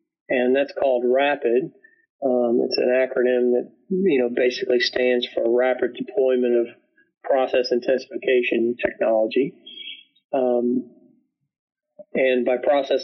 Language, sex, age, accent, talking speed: English, male, 40-59, American, 110 wpm